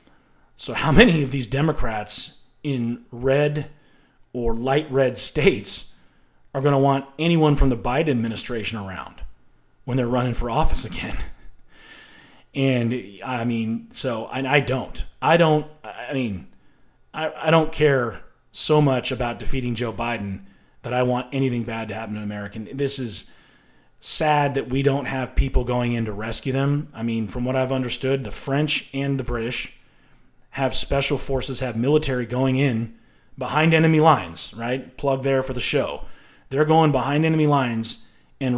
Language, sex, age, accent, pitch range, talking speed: English, male, 30-49, American, 120-145 Hz, 165 wpm